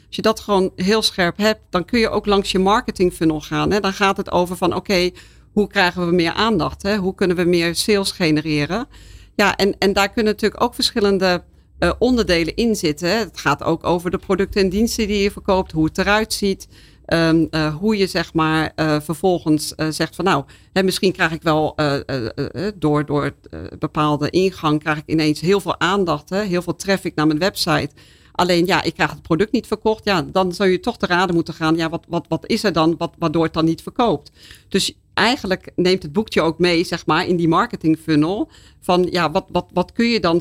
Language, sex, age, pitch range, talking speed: Dutch, female, 50-69, 155-195 Hz, 225 wpm